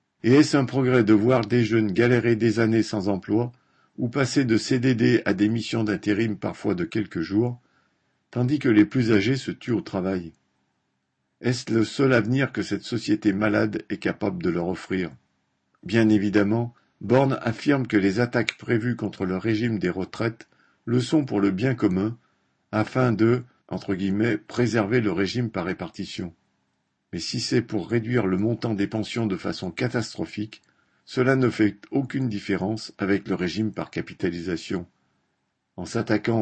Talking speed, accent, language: 165 wpm, French, French